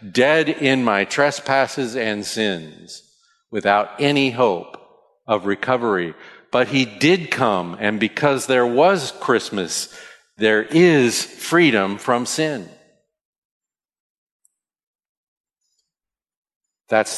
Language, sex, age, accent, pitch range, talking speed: English, male, 50-69, American, 100-130 Hz, 90 wpm